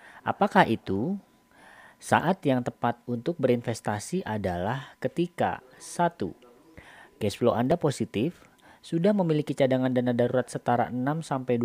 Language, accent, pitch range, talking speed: Indonesian, native, 120-165 Hz, 105 wpm